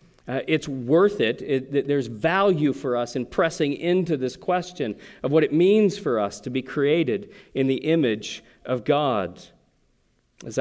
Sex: male